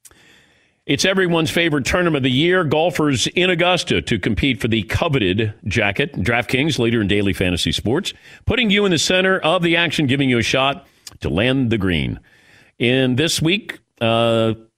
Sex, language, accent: male, English, American